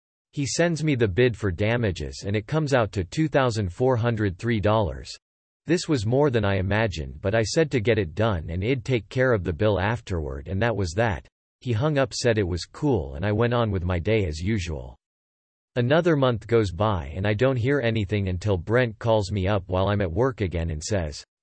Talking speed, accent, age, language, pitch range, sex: 210 wpm, American, 40-59, English, 95-125 Hz, male